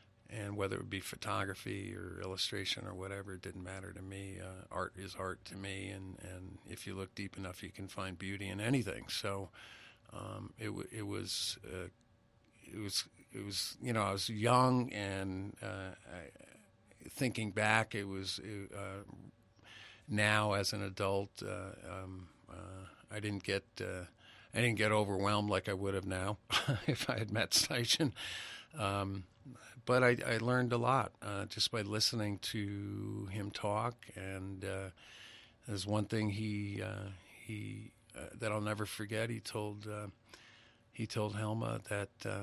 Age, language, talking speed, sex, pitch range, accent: 50-69, English, 165 wpm, male, 95-110 Hz, American